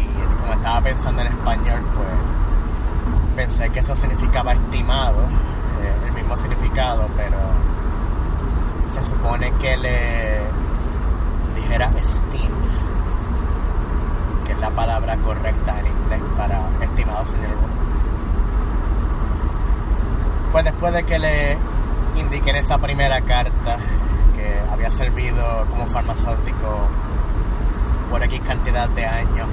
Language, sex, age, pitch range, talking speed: Spanish, male, 30-49, 75-95 Hz, 100 wpm